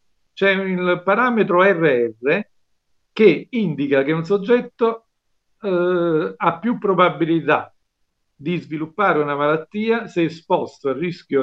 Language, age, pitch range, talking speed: Italian, 50-69, 145-195 Hz, 110 wpm